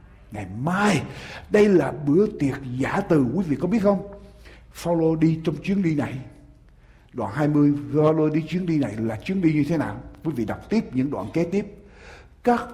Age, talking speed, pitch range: 60-79, 200 wpm, 135-195 Hz